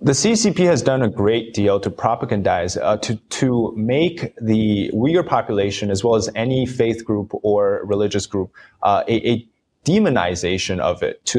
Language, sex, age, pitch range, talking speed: English, male, 20-39, 100-125 Hz, 170 wpm